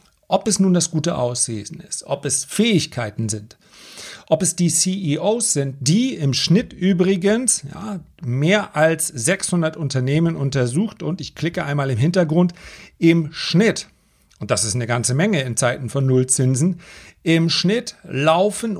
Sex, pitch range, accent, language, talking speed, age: male, 125-165 Hz, German, German, 145 wpm, 40-59